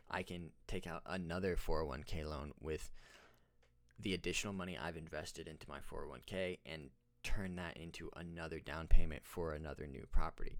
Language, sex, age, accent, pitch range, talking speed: English, male, 20-39, American, 75-100 Hz, 155 wpm